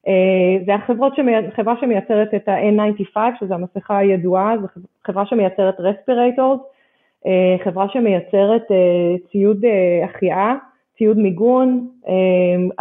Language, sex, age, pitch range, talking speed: Hebrew, female, 20-39, 185-235 Hz, 110 wpm